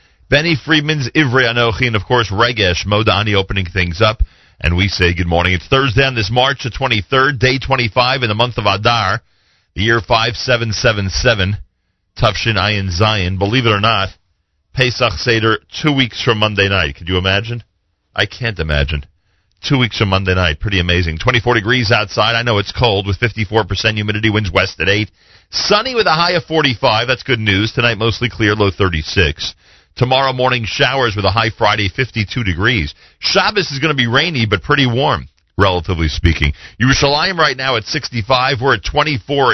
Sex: male